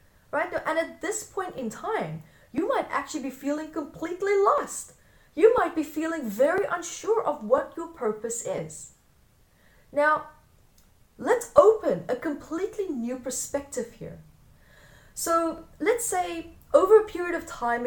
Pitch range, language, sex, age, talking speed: 245-355 Hz, English, female, 20-39, 135 wpm